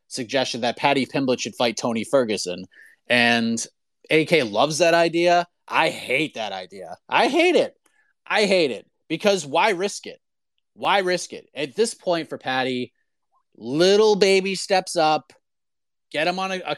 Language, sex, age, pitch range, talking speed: English, male, 30-49, 130-175 Hz, 155 wpm